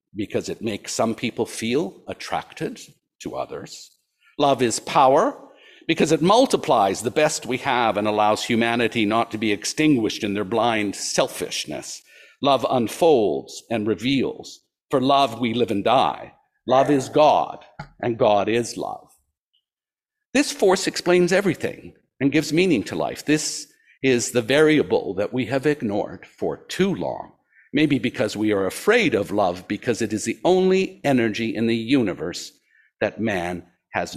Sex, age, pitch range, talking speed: male, 60-79, 110-160 Hz, 150 wpm